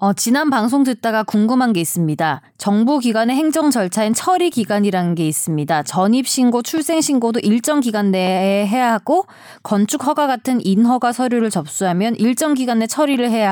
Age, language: 20-39, Korean